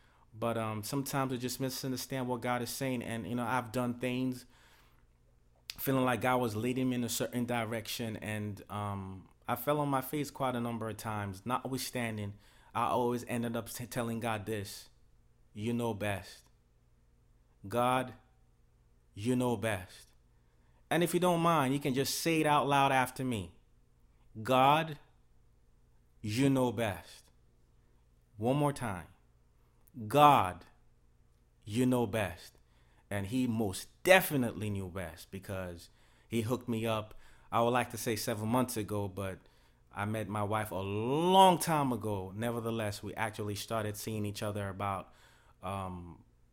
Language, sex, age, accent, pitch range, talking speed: English, male, 30-49, American, 100-125 Hz, 150 wpm